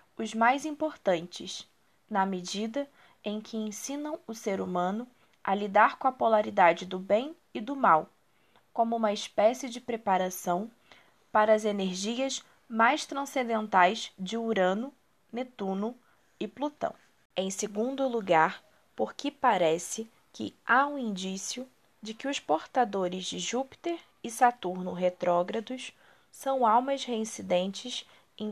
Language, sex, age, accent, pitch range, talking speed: Portuguese, female, 20-39, Brazilian, 195-250 Hz, 120 wpm